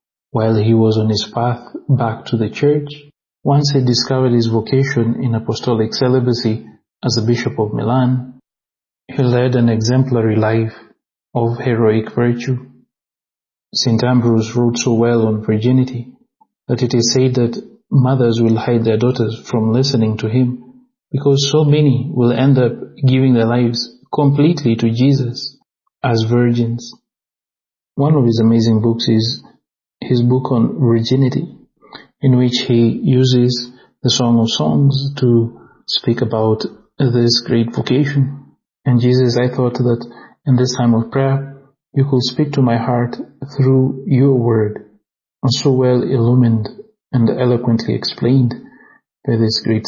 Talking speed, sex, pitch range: 140 wpm, male, 115-130 Hz